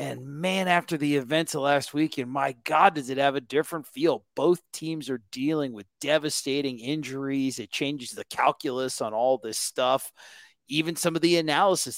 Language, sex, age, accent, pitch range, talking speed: English, male, 30-49, American, 120-150 Hz, 185 wpm